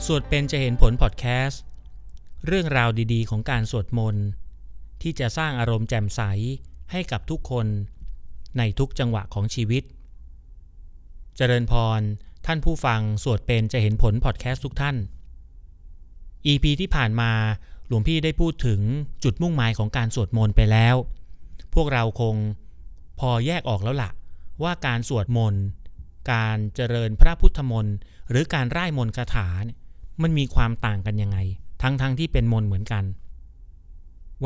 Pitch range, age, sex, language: 90-130 Hz, 30-49, male, Thai